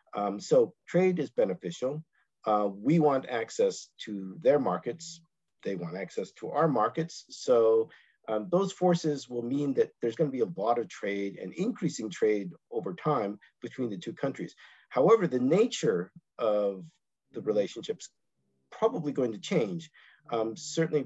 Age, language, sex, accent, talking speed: 50-69, English, male, American, 155 wpm